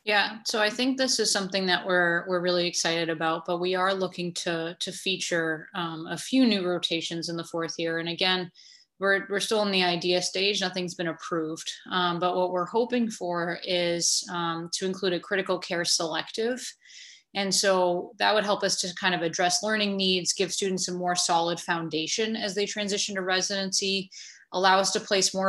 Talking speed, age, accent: 195 wpm, 20-39, American